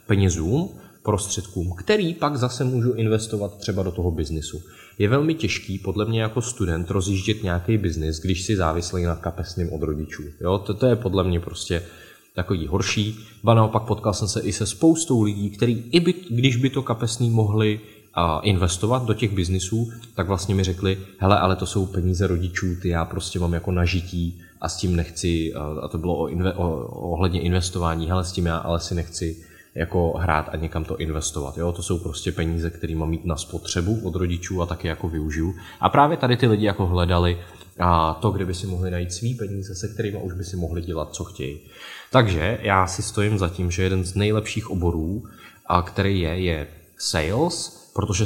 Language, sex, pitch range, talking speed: Czech, male, 85-105 Hz, 195 wpm